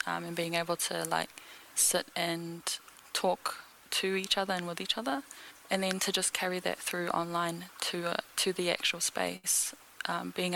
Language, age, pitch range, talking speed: English, 10-29, 170-185 Hz, 180 wpm